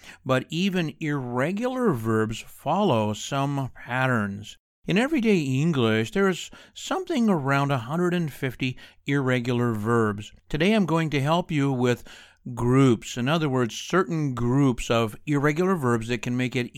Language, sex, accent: English, male, American